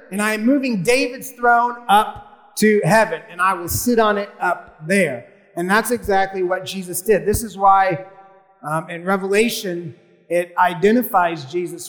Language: English